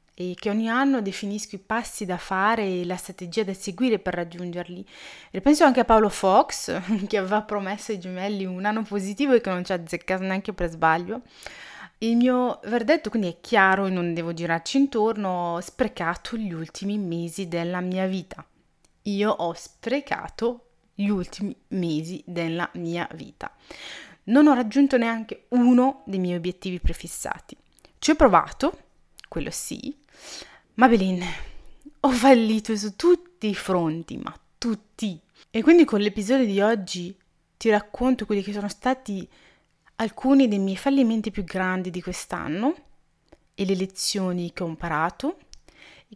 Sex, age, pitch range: female, 30-49, 180-235 Hz